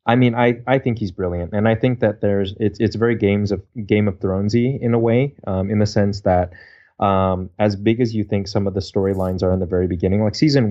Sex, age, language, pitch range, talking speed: male, 20-39, English, 95-110 Hz, 250 wpm